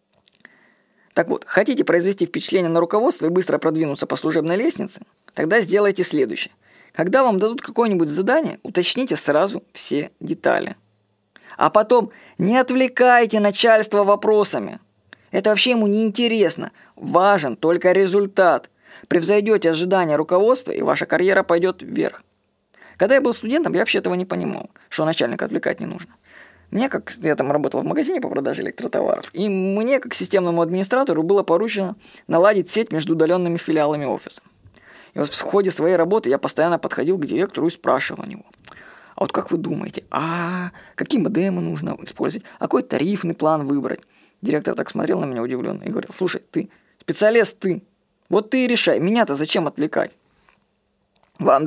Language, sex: Russian, female